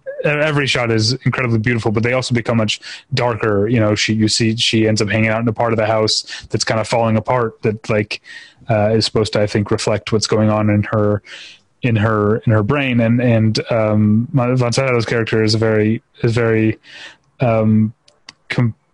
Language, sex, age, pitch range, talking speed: English, male, 30-49, 110-130 Hz, 205 wpm